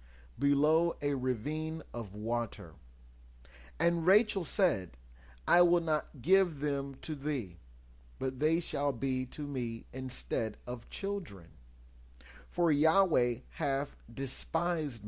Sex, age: male, 40-59